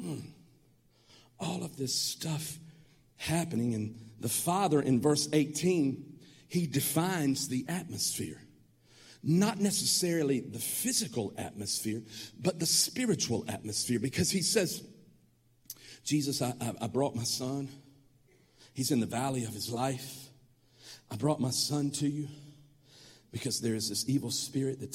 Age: 50-69